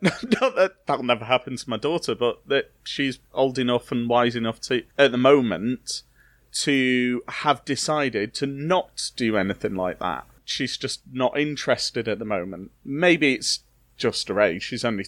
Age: 30-49